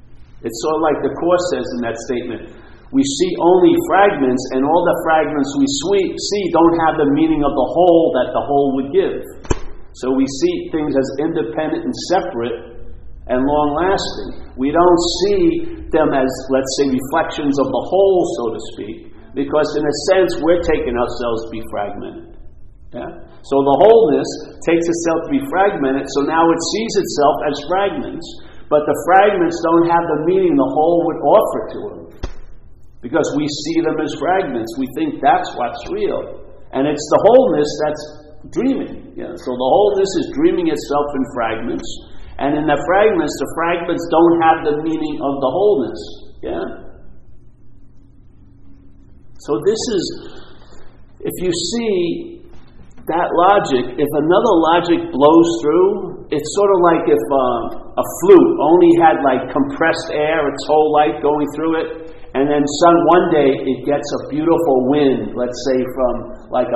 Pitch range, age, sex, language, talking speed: 140-185 Hz, 50-69, male, English, 160 wpm